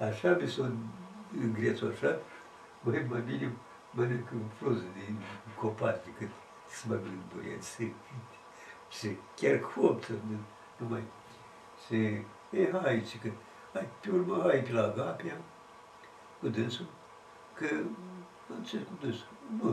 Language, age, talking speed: Romanian, 60-79, 130 wpm